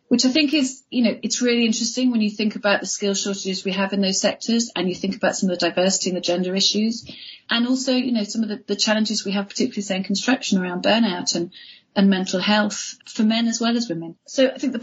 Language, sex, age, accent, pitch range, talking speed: English, female, 40-59, British, 190-240 Hz, 255 wpm